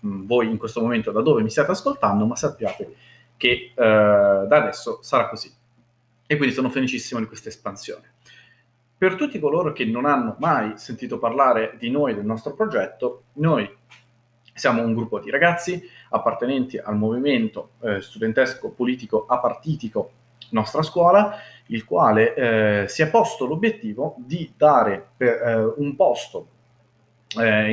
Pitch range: 115-145 Hz